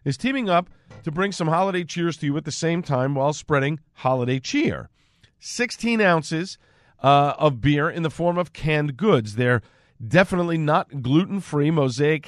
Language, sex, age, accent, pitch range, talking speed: English, male, 40-59, American, 120-165 Hz, 165 wpm